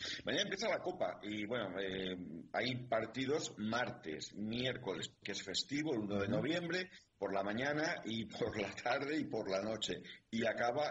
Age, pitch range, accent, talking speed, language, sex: 50-69, 95-125 Hz, Spanish, 170 wpm, Spanish, male